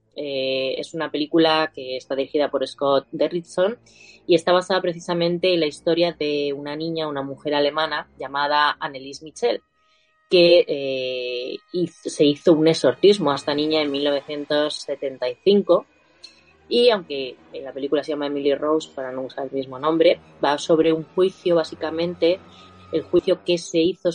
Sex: female